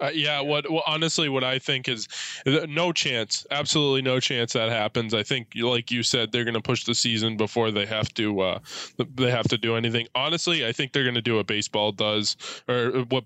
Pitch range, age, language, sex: 115-135 Hz, 10-29, English, male